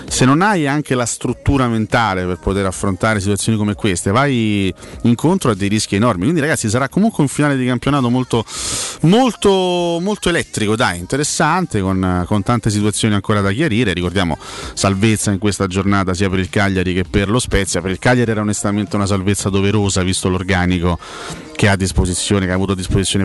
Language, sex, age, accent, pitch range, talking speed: Italian, male, 30-49, native, 95-110 Hz, 185 wpm